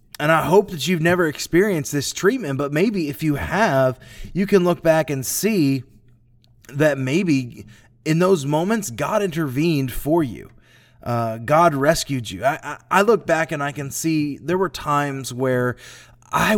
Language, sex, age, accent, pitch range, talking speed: English, male, 20-39, American, 125-165 Hz, 165 wpm